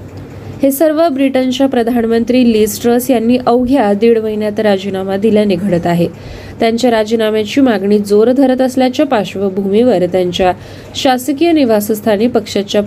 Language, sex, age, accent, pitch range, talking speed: Marathi, female, 20-39, native, 200-260 Hz, 90 wpm